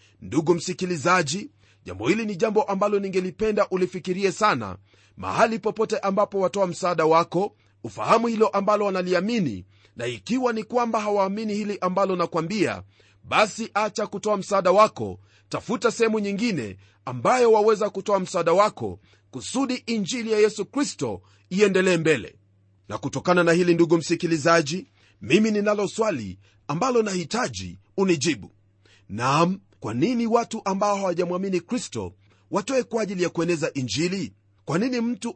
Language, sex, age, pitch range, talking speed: Swahili, male, 40-59, 130-215 Hz, 125 wpm